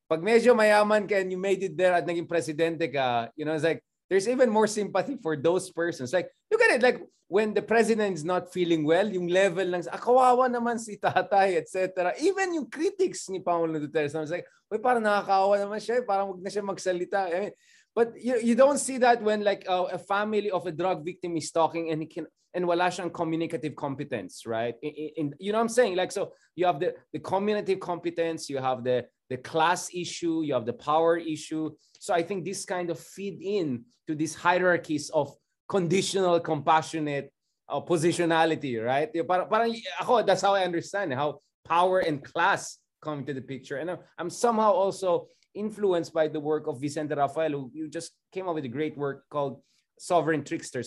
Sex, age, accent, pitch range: male, 20-39, native, 155-195 Hz